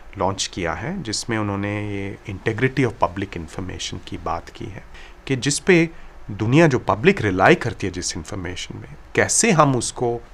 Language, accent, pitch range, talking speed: Hindi, native, 100-135 Hz, 170 wpm